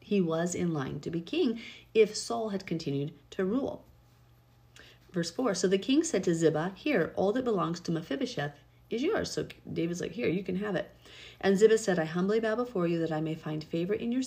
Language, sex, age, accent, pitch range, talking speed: English, female, 40-59, American, 155-205 Hz, 220 wpm